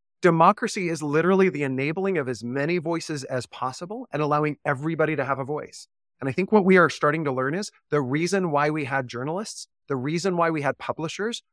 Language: English